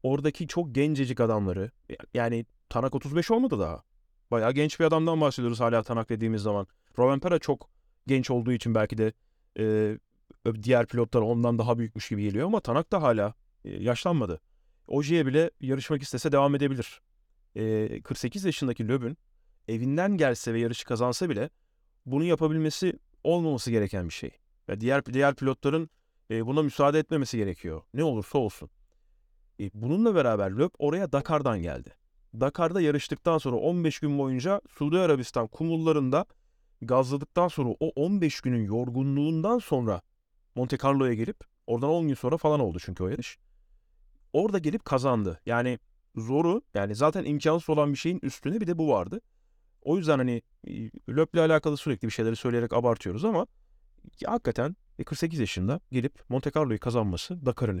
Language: Turkish